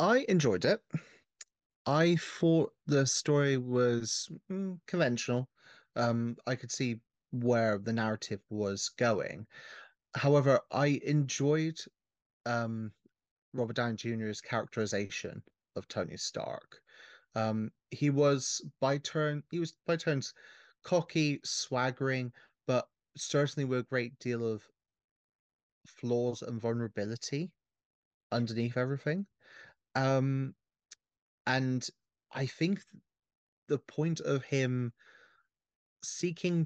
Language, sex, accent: English, male, British